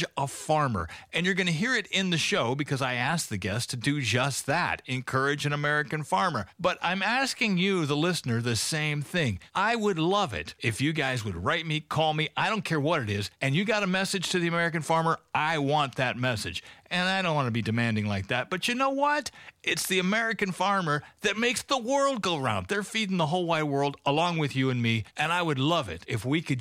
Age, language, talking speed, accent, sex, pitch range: 40-59, English, 240 wpm, American, male, 125-185 Hz